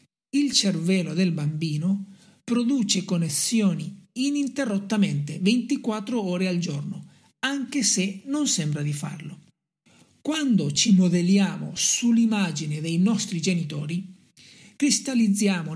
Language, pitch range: Italian, 180-240 Hz